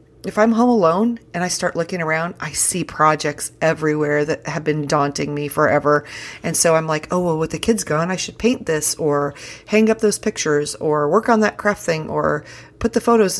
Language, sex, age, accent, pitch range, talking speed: English, female, 40-59, American, 155-215 Hz, 215 wpm